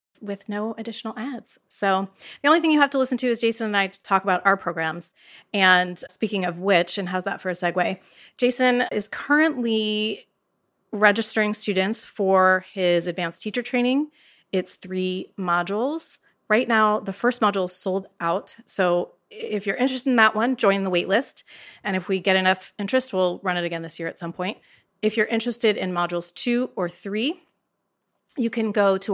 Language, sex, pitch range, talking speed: English, female, 180-230 Hz, 185 wpm